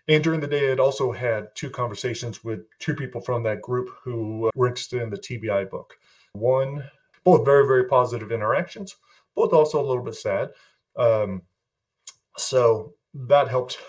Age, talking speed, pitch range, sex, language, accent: 30-49, 165 wpm, 110-135 Hz, male, English, American